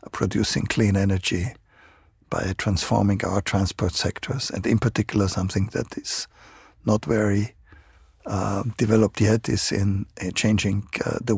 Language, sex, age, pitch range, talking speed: Swedish, male, 50-69, 100-115 Hz, 130 wpm